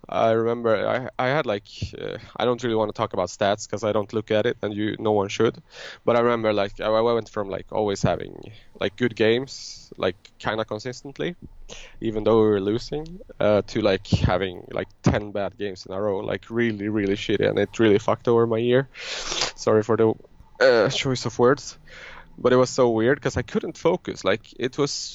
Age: 20-39